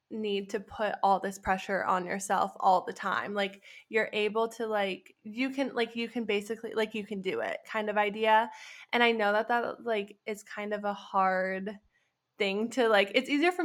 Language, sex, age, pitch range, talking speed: English, female, 10-29, 195-225 Hz, 205 wpm